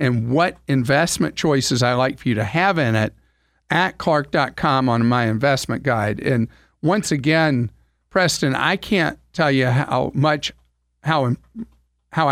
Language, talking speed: English, 145 wpm